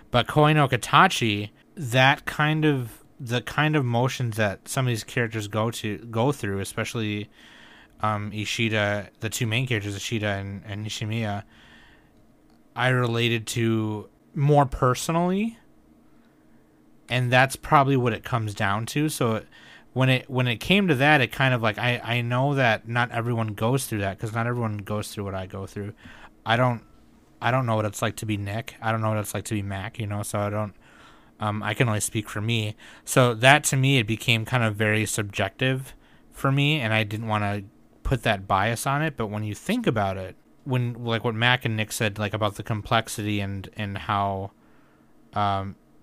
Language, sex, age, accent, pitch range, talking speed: English, male, 30-49, American, 105-125 Hz, 190 wpm